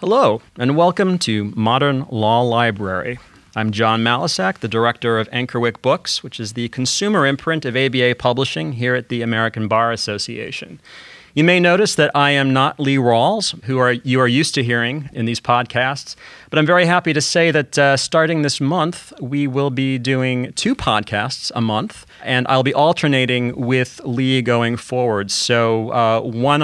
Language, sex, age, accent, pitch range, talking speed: English, male, 40-59, American, 120-150 Hz, 175 wpm